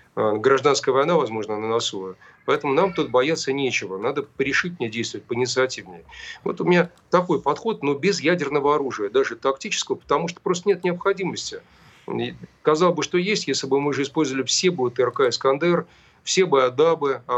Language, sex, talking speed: Russian, male, 165 wpm